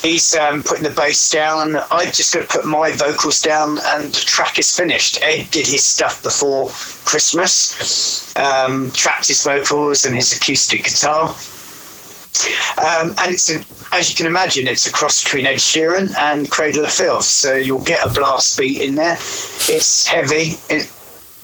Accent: British